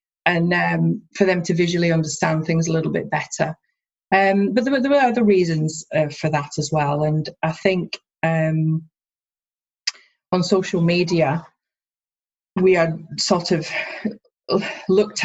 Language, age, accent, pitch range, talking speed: English, 30-49, British, 155-185 Hz, 140 wpm